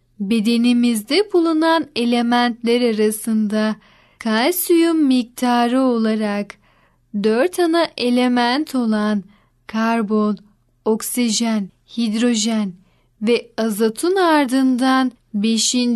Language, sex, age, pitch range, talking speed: Turkish, female, 10-29, 225-275 Hz, 70 wpm